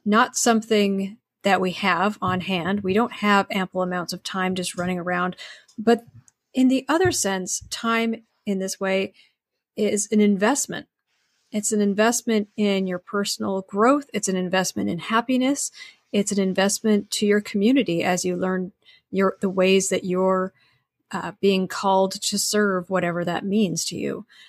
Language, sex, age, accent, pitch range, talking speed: English, female, 40-59, American, 185-225 Hz, 160 wpm